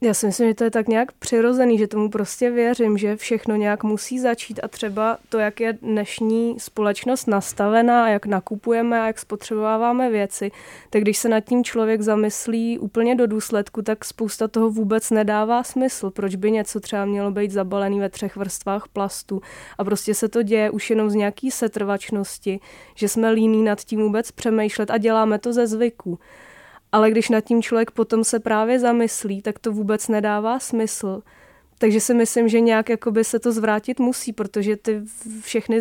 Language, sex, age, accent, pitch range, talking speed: Czech, female, 20-39, native, 210-230 Hz, 180 wpm